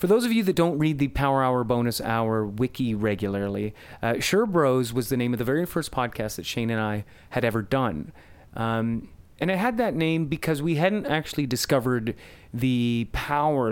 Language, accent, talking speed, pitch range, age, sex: English, American, 195 wpm, 115-155 Hz, 30-49, male